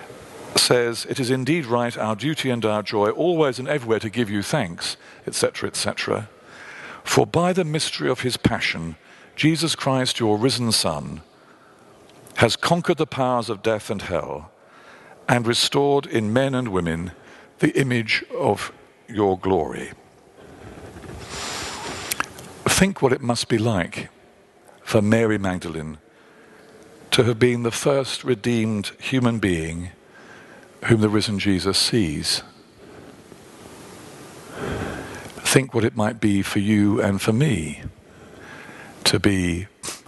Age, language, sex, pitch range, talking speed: 50-69, English, male, 95-125 Hz, 125 wpm